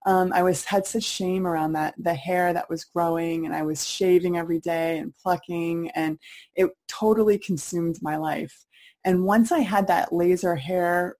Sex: female